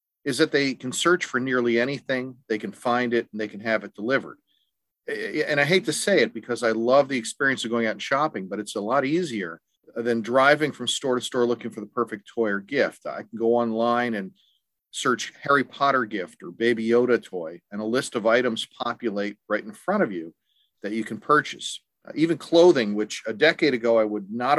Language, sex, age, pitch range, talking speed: English, male, 40-59, 110-135 Hz, 215 wpm